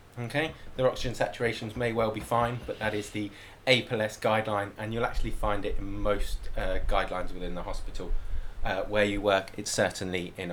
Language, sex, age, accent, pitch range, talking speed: English, male, 20-39, British, 100-115 Hz, 190 wpm